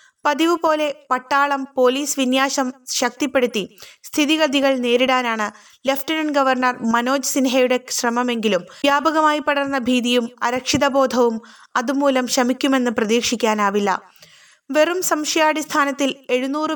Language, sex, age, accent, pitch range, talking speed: Malayalam, female, 20-39, native, 245-290 Hz, 80 wpm